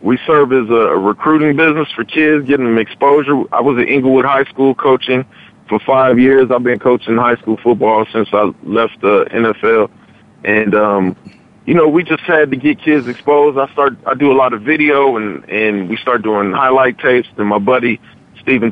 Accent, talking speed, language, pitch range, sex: American, 205 wpm, English, 115-140 Hz, male